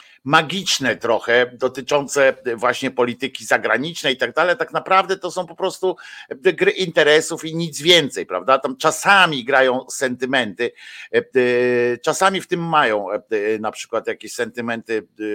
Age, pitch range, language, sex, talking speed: 50-69, 135-190 Hz, Polish, male, 130 wpm